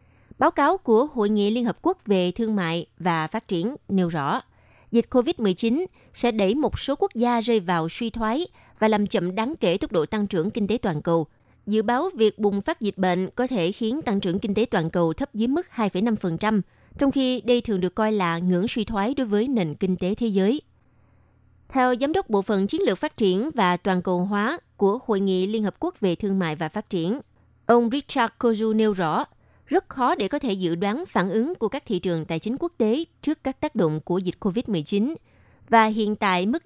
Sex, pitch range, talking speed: female, 180-235 Hz, 225 wpm